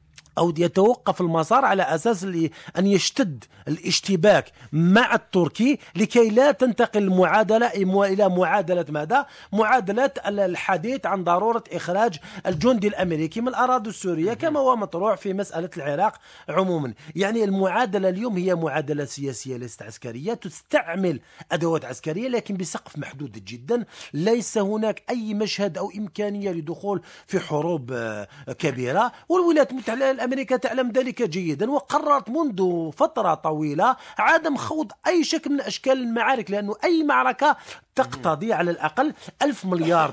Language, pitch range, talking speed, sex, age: Arabic, 170-255 Hz, 125 wpm, male, 40-59